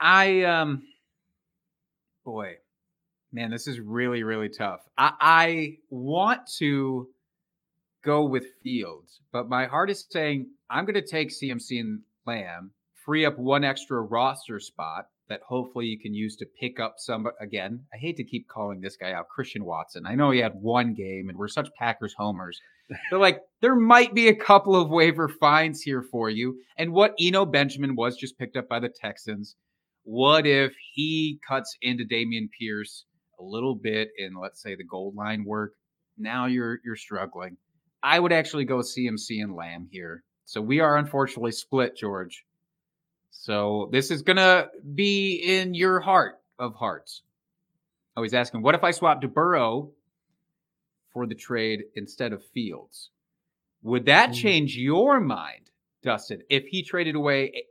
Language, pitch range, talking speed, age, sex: English, 115-170 Hz, 165 wpm, 30-49, male